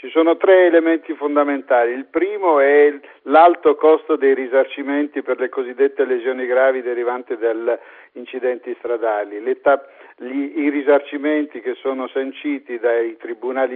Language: Italian